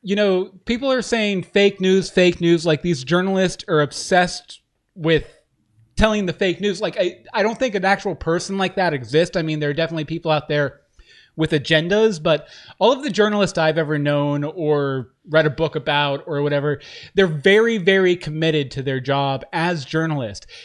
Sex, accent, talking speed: male, American, 185 wpm